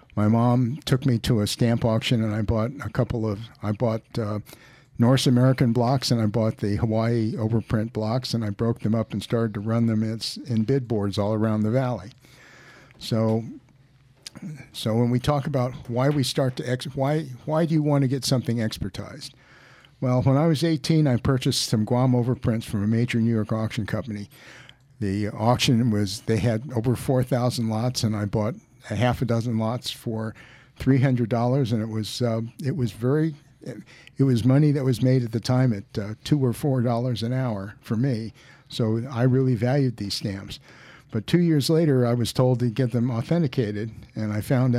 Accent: American